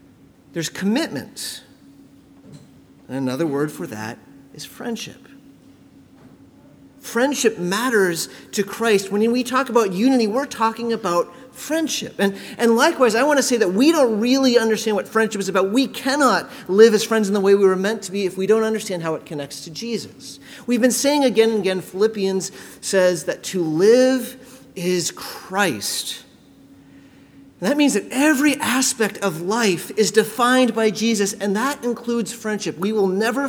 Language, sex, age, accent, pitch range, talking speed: English, male, 40-59, American, 180-245 Hz, 165 wpm